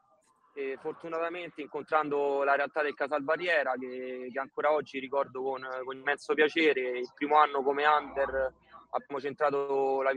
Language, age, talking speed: Italian, 20-39, 140 wpm